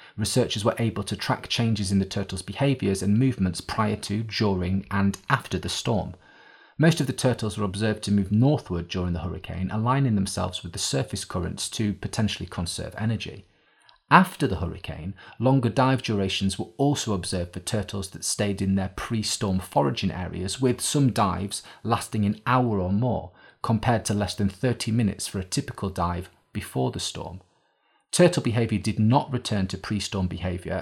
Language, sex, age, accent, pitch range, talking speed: English, male, 30-49, British, 95-120 Hz, 170 wpm